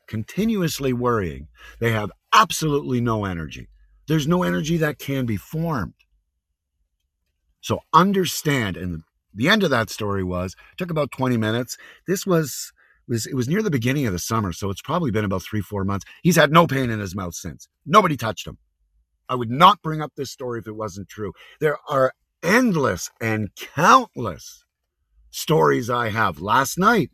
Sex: male